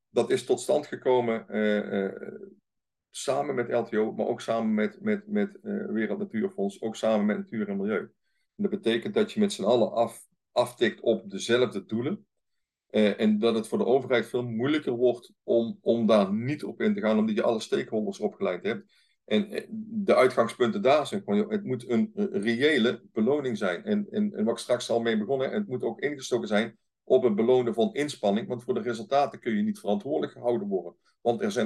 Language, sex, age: Dutch, male, 50-69